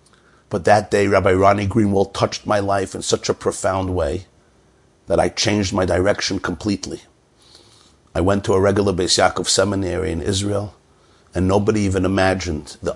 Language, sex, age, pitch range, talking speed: English, male, 50-69, 90-105 Hz, 160 wpm